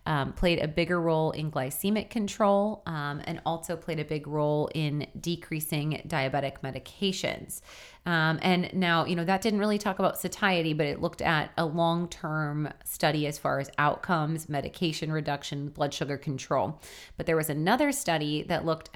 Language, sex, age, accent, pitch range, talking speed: English, female, 30-49, American, 150-180 Hz, 170 wpm